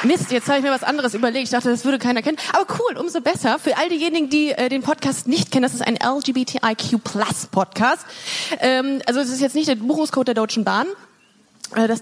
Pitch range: 215-280 Hz